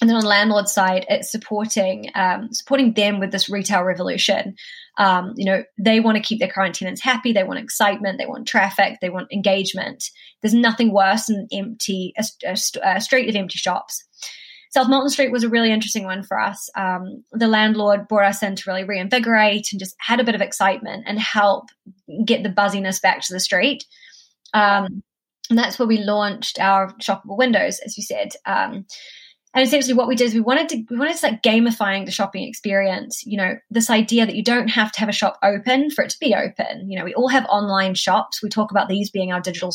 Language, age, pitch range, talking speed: English, 20-39, 195-240 Hz, 215 wpm